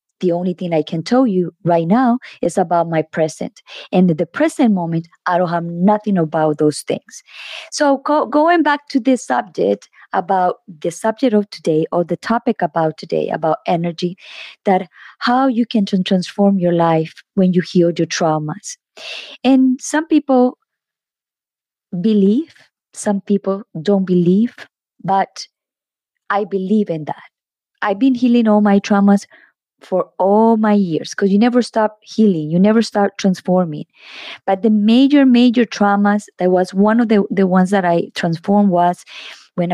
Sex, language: female, Spanish